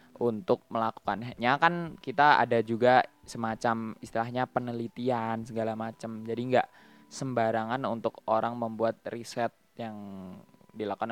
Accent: native